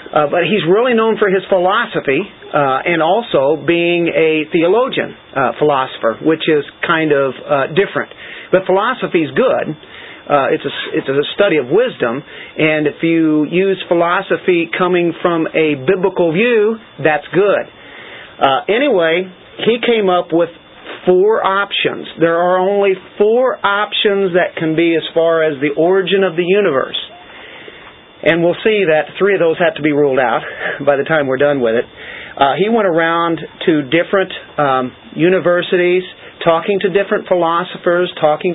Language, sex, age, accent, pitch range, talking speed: English, male, 40-59, American, 160-190 Hz, 155 wpm